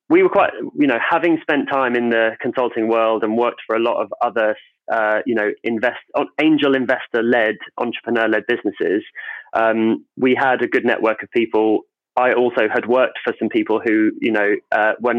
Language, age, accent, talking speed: English, 30-49, British, 185 wpm